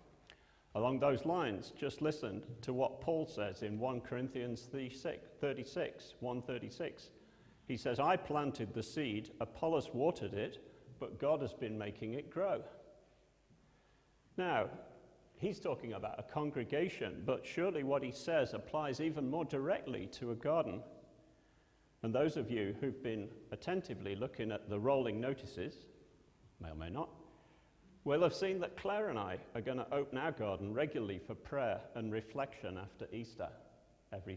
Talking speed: 150 wpm